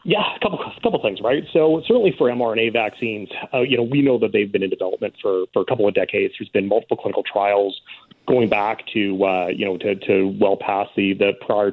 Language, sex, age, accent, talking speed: English, male, 30-49, American, 235 wpm